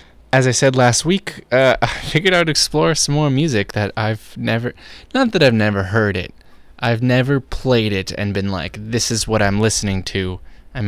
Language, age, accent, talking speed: English, 20-39, American, 205 wpm